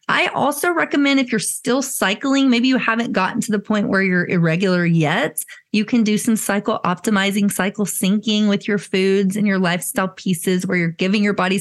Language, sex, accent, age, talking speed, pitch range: English, female, American, 30-49, 195 wpm, 180-215 Hz